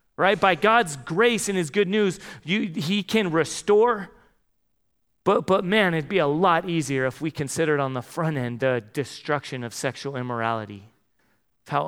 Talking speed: 170 wpm